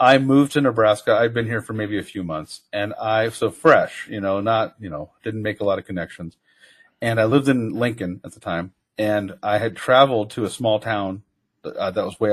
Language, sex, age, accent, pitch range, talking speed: English, male, 40-59, American, 105-140 Hz, 230 wpm